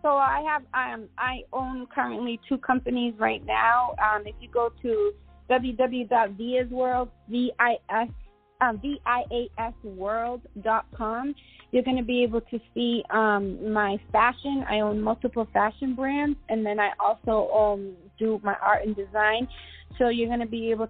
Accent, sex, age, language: American, female, 20-39, English